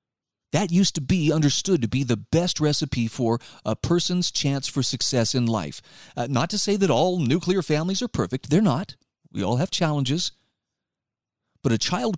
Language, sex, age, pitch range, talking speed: English, male, 40-59, 120-170 Hz, 180 wpm